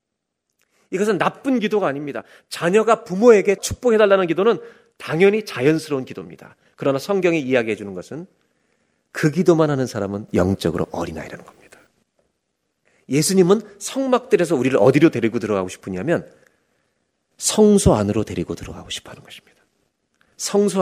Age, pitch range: 40-59, 115-195 Hz